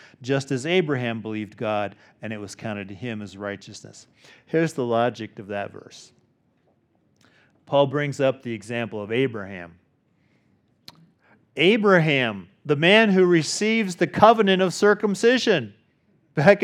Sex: male